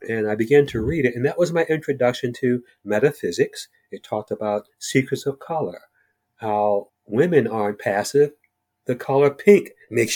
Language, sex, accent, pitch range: English, male, American, 125-185 Hz